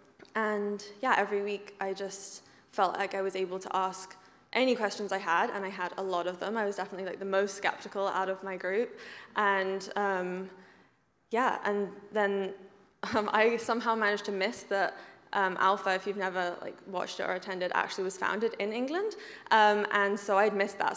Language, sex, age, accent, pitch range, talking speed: English, female, 10-29, British, 190-210 Hz, 195 wpm